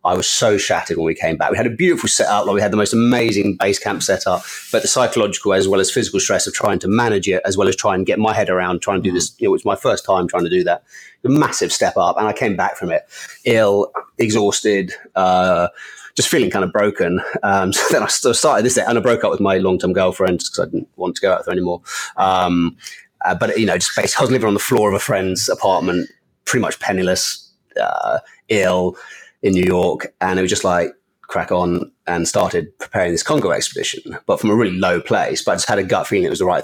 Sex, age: male, 30-49